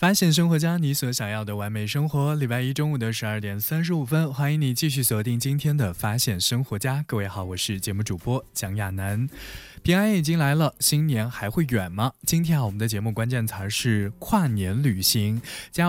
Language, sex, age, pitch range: Chinese, male, 20-39, 105-145 Hz